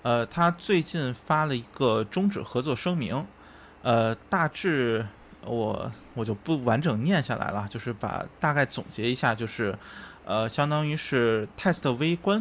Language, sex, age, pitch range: Chinese, male, 20-39, 110-140 Hz